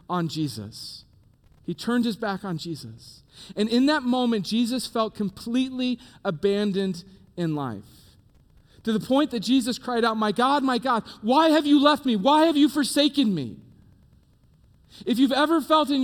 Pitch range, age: 130-210 Hz, 40-59